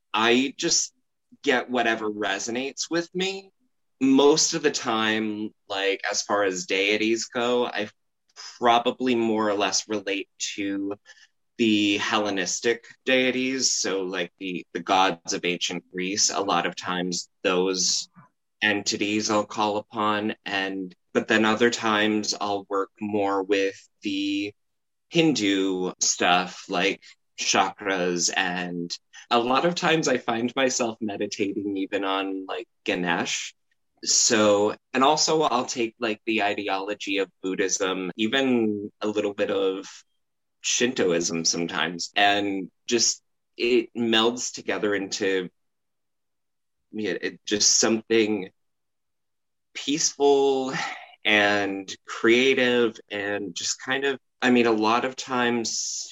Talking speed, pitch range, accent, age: 115 wpm, 95-125 Hz, American, 20-39